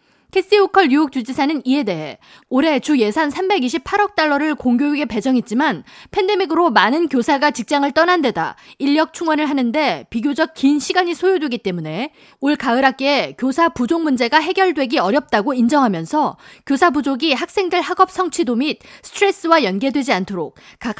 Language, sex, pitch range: Korean, female, 250-330 Hz